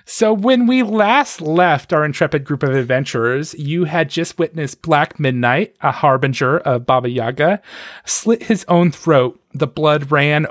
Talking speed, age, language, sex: 160 wpm, 30-49, English, male